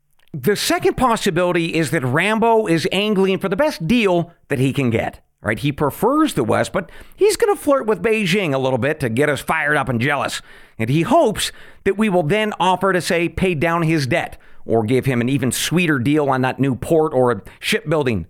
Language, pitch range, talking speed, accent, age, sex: English, 145-200 Hz, 215 wpm, American, 50-69, male